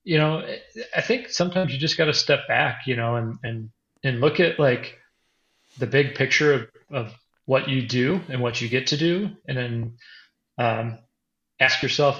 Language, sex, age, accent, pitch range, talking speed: English, male, 30-49, American, 120-140 Hz, 185 wpm